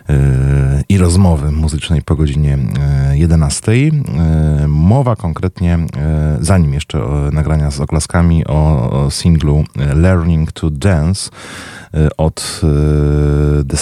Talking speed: 90 wpm